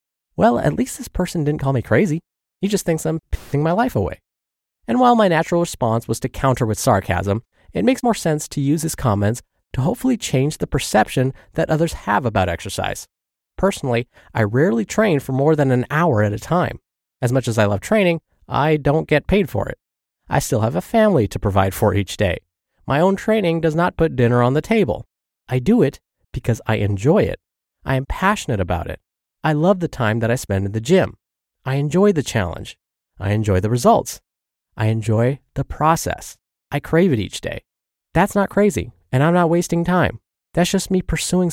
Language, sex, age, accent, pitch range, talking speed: English, male, 20-39, American, 110-165 Hz, 200 wpm